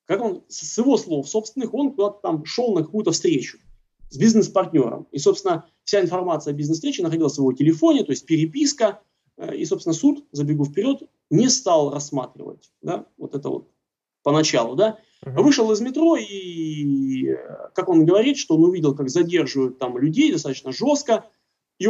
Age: 30-49